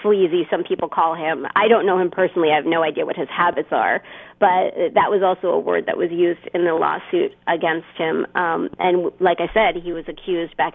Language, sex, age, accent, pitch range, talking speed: English, female, 30-49, American, 170-250 Hz, 230 wpm